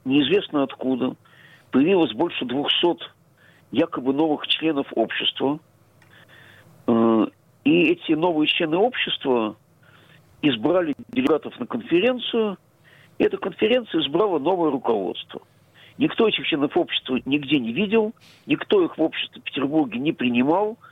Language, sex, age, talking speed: Russian, male, 50-69, 110 wpm